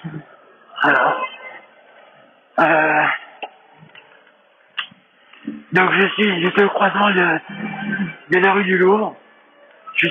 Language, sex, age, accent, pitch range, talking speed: French, male, 60-79, French, 160-195 Hz, 100 wpm